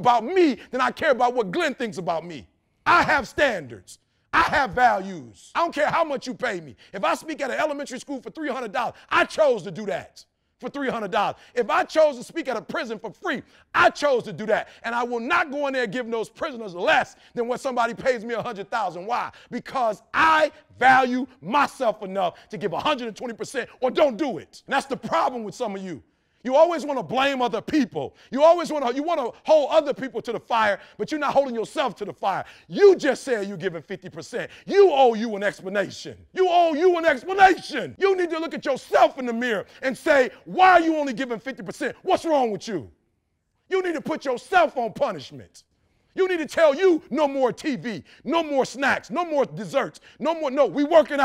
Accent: American